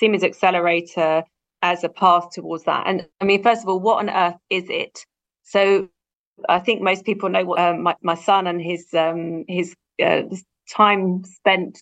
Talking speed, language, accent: 190 wpm, English, British